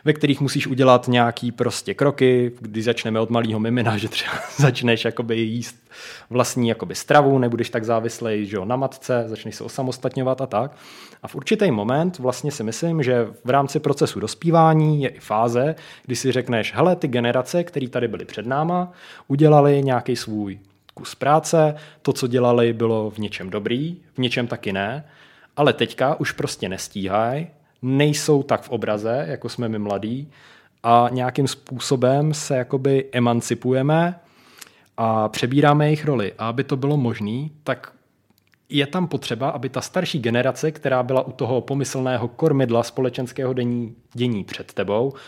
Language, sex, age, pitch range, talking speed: Czech, male, 20-39, 115-145 Hz, 160 wpm